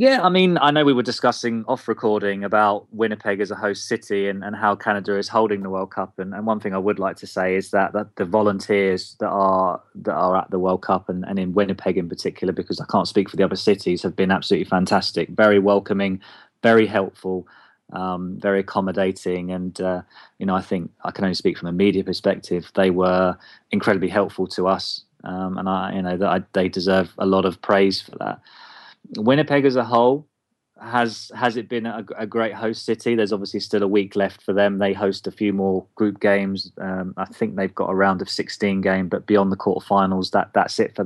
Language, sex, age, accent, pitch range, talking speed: English, male, 20-39, British, 95-110 Hz, 225 wpm